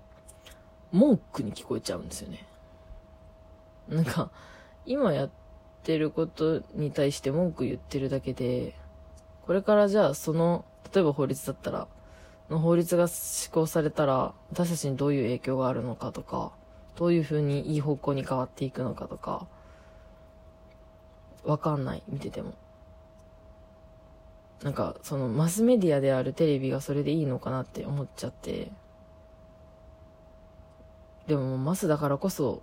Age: 20-39